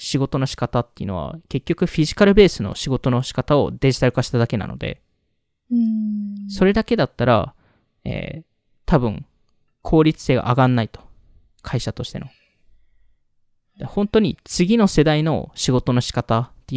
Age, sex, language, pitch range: 20-39, male, Japanese, 115-170 Hz